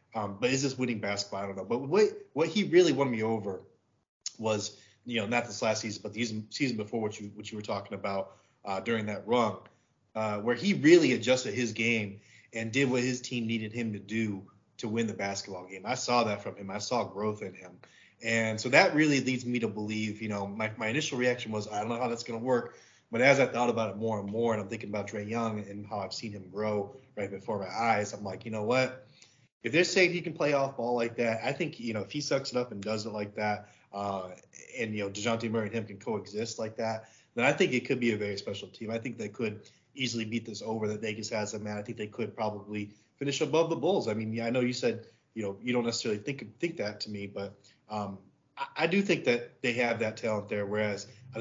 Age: 30-49